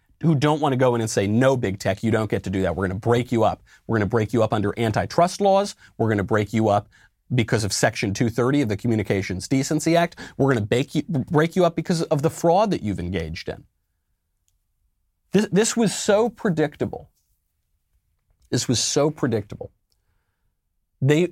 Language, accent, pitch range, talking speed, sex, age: English, American, 95-155 Hz, 200 wpm, male, 40-59